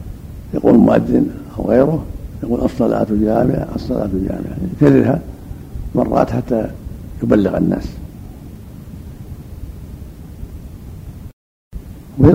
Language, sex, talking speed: Arabic, male, 75 wpm